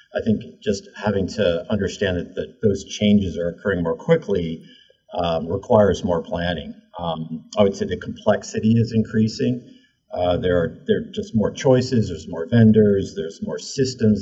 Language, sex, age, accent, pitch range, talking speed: English, male, 50-69, American, 95-135 Hz, 175 wpm